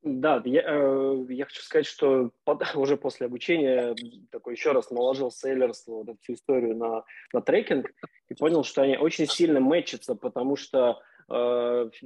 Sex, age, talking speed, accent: male, 20-39, 155 wpm, native